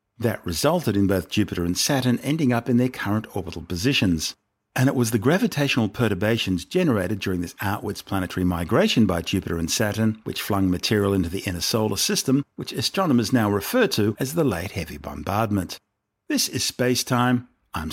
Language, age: English, 50-69